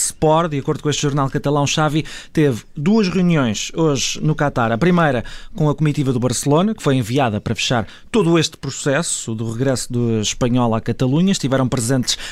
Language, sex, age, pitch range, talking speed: Portuguese, male, 20-39, 120-150 Hz, 180 wpm